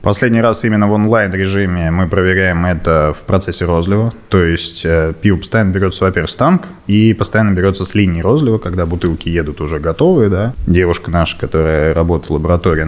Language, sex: Russian, male